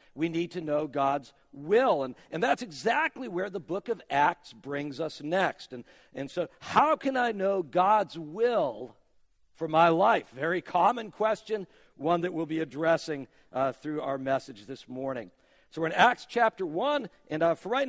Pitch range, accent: 140-190 Hz, American